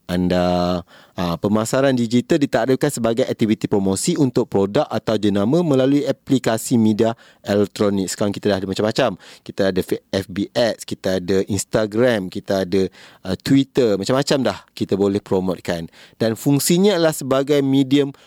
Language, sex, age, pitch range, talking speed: Malay, male, 30-49, 105-140 Hz, 140 wpm